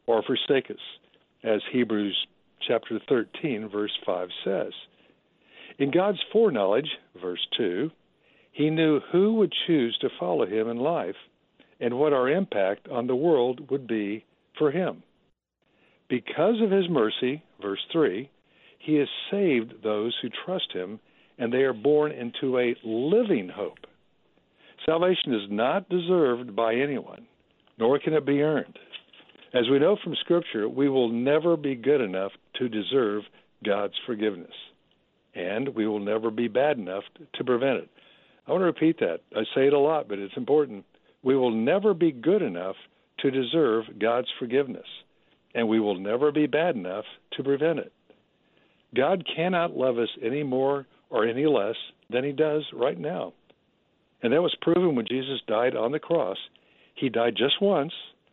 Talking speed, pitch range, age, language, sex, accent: 160 wpm, 115-160 Hz, 60-79, English, male, American